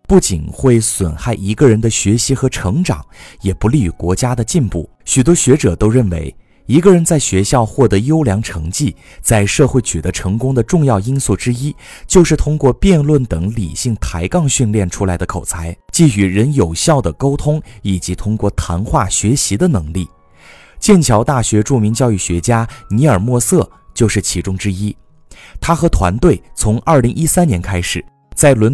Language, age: Chinese, 30-49